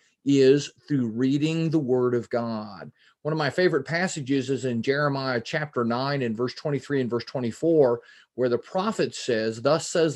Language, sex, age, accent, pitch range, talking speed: English, male, 40-59, American, 125-160 Hz, 170 wpm